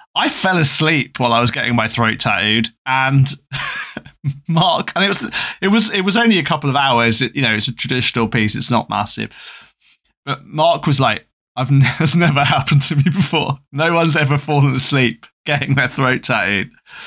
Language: English